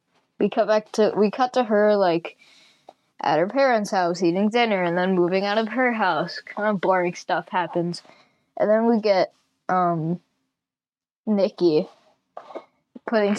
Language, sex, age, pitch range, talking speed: English, female, 10-29, 185-225 Hz, 150 wpm